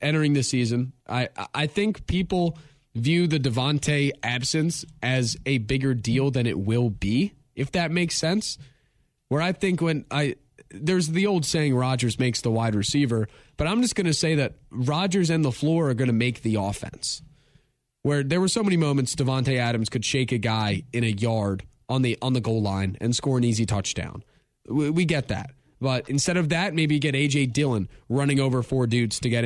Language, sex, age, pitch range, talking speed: English, male, 20-39, 120-155 Hz, 200 wpm